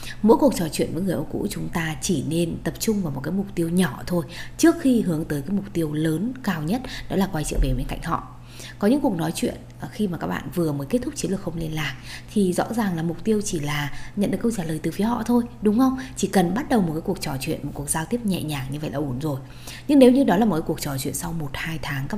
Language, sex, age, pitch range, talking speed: Vietnamese, female, 20-39, 150-210 Hz, 300 wpm